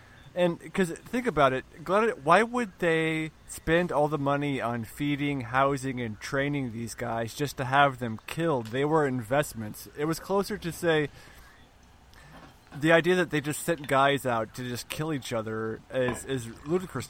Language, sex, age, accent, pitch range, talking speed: English, male, 20-39, American, 125-160 Hz, 170 wpm